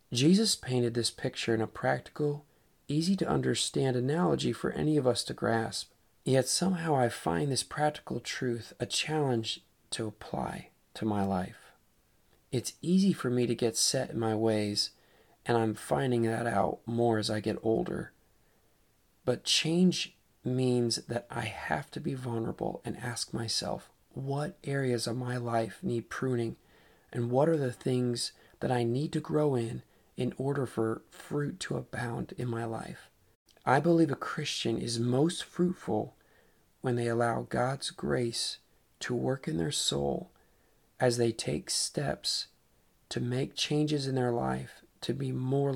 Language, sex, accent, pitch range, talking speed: English, male, American, 115-140 Hz, 155 wpm